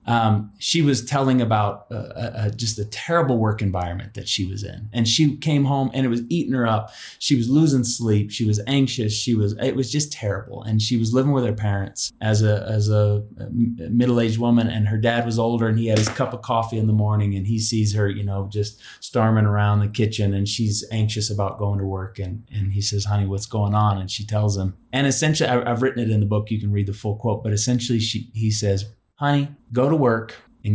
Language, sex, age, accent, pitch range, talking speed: English, male, 20-39, American, 105-125 Hz, 235 wpm